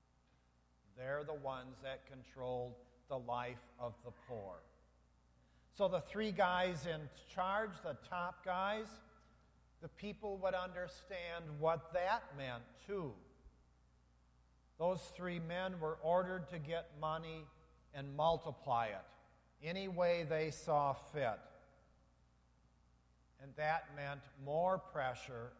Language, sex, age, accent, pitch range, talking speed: English, male, 50-69, American, 115-175 Hz, 115 wpm